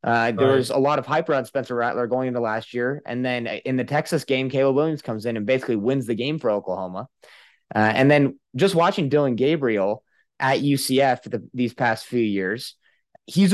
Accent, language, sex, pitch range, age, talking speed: American, English, male, 115-140 Hz, 20-39, 200 wpm